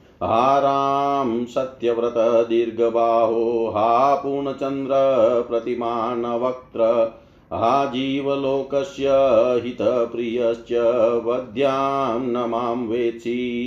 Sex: male